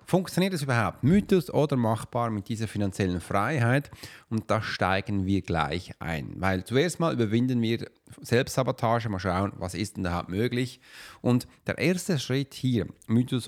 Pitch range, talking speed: 105-145 Hz, 160 wpm